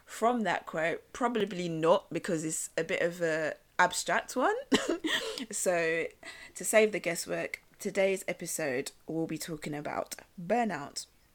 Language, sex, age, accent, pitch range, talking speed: English, female, 20-39, British, 165-220 Hz, 130 wpm